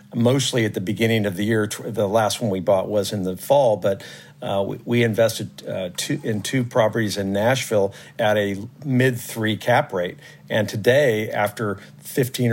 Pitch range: 105-120 Hz